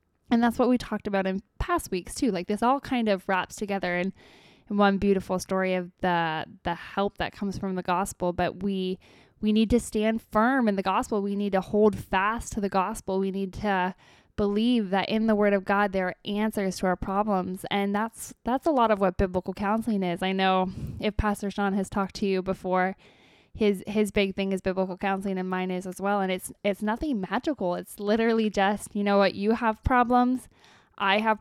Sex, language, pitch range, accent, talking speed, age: female, English, 190-215 Hz, American, 215 wpm, 10-29